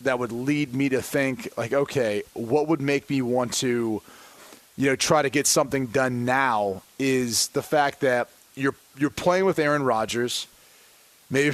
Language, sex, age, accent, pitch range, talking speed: English, male, 30-49, American, 130-160 Hz, 170 wpm